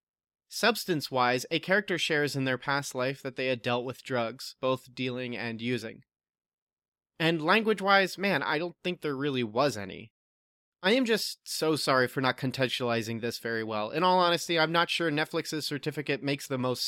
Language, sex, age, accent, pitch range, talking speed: English, male, 30-49, American, 125-170 Hz, 180 wpm